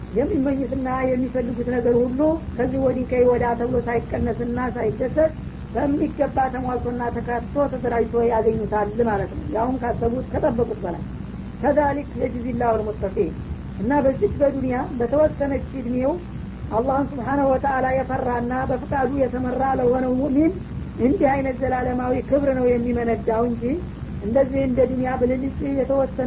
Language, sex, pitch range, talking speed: Amharic, female, 240-270 Hz, 95 wpm